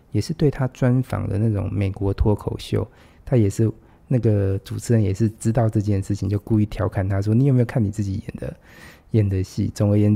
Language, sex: Chinese, male